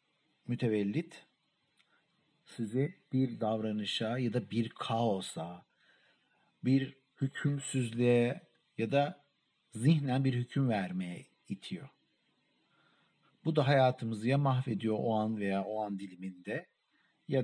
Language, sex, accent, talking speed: Turkish, male, native, 100 wpm